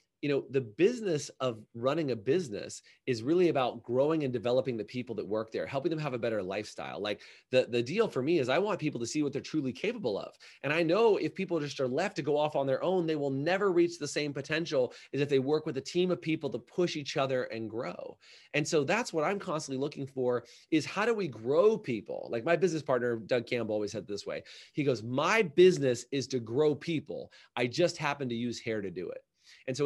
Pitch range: 130-170 Hz